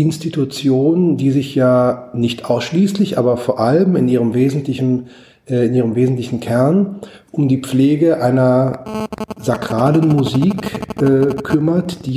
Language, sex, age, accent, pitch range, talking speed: German, male, 40-59, German, 120-145 Hz, 115 wpm